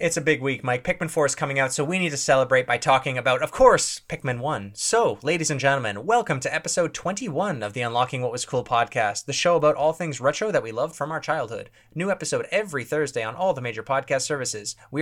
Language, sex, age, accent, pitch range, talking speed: English, male, 20-39, American, 130-175 Hz, 240 wpm